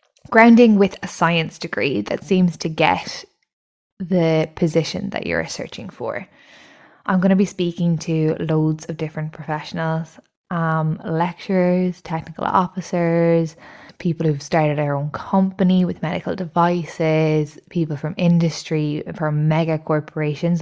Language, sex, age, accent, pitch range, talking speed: English, female, 10-29, Irish, 160-190 Hz, 130 wpm